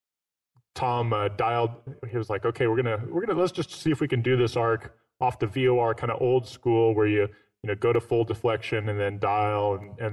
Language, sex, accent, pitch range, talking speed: English, male, American, 115-135 Hz, 250 wpm